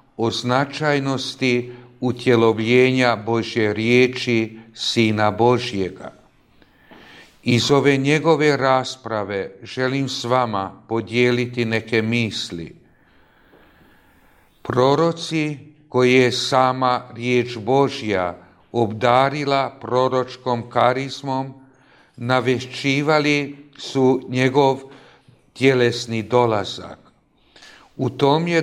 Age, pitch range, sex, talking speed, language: 50-69, 120-135 Hz, male, 70 wpm, Croatian